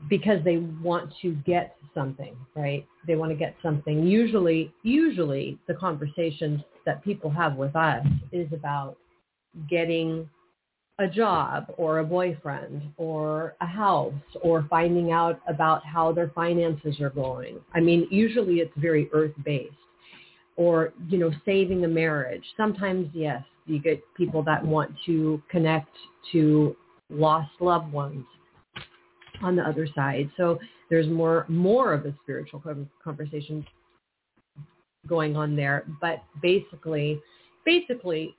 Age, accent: 40-59, American